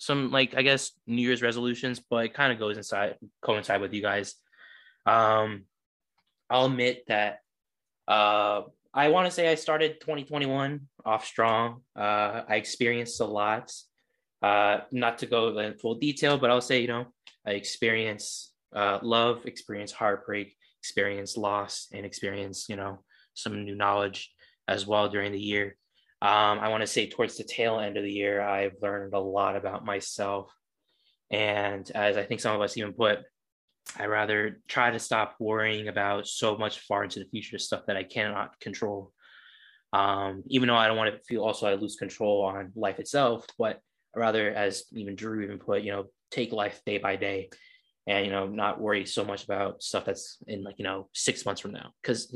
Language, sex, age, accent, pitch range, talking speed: English, male, 10-29, American, 100-115 Hz, 185 wpm